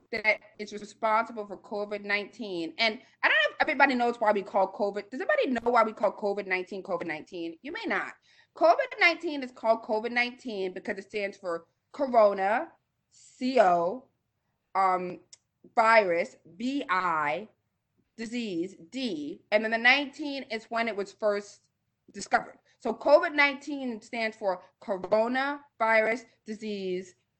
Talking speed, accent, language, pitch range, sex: 145 wpm, American, English, 205-285 Hz, female